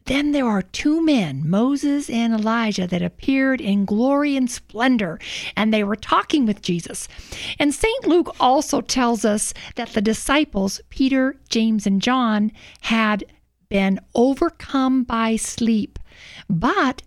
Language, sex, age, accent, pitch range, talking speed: English, female, 50-69, American, 210-265 Hz, 135 wpm